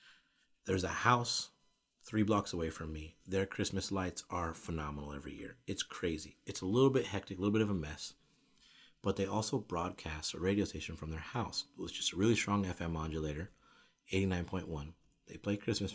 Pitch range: 80-105 Hz